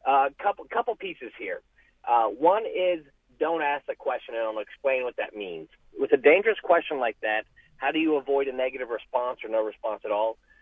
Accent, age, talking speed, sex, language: American, 40-59, 205 wpm, male, English